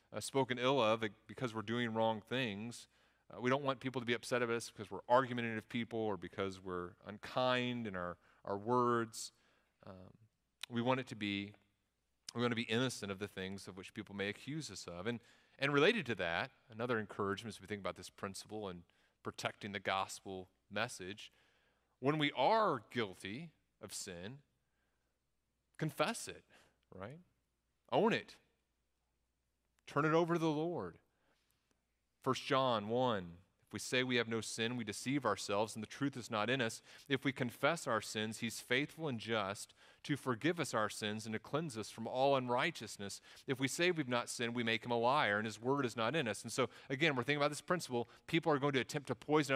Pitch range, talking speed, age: 110-140 Hz, 195 wpm, 30-49